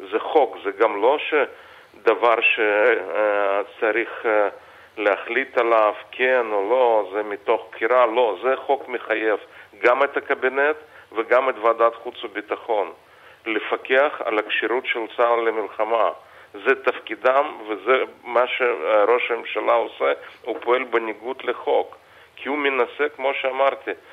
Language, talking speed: Hebrew, 125 wpm